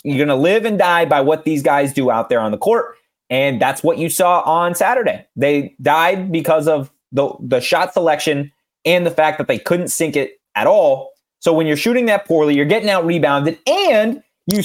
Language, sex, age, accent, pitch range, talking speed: English, male, 30-49, American, 175-275 Hz, 215 wpm